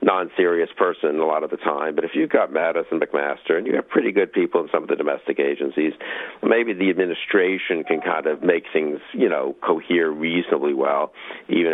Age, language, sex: 50-69, English, male